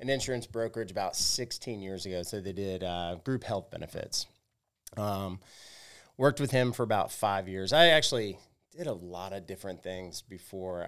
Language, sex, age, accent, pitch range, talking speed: English, male, 30-49, American, 90-105 Hz, 170 wpm